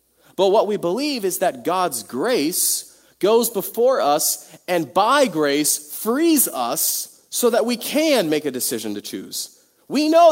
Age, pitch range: 40-59, 160-235 Hz